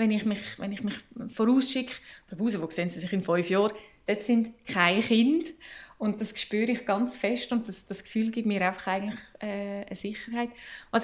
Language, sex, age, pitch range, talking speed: German, female, 20-39, 195-235 Hz, 205 wpm